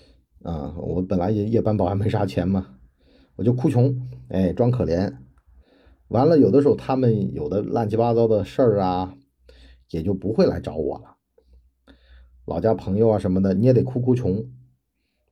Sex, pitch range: male, 90-125 Hz